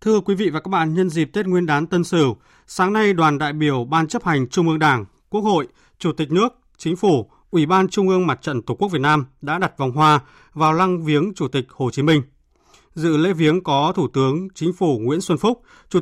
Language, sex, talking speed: Vietnamese, male, 245 wpm